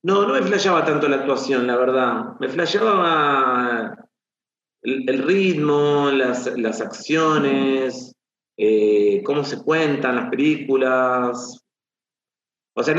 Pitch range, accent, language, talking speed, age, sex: 120-150 Hz, Argentinian, Spanish, 120 wpm, 40-59, male